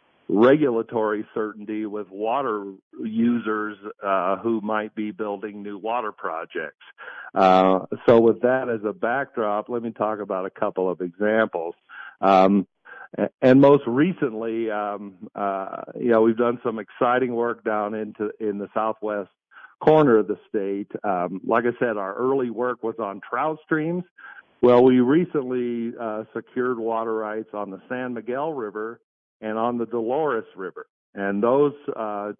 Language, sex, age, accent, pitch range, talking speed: English, male, 50-69, American, 105-125 Hz, 150 wpm